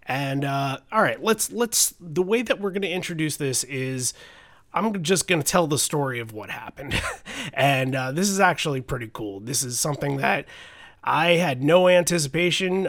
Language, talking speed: English, 185 wpm